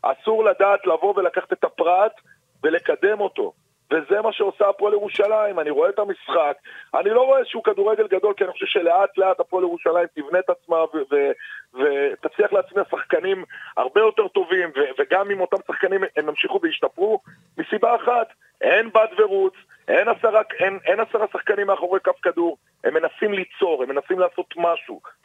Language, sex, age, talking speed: Hebrew, male, 40-59, 165 wpm